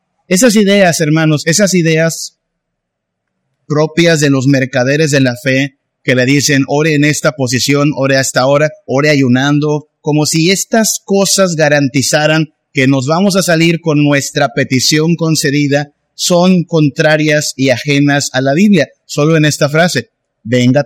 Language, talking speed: Spanish, 145 wpm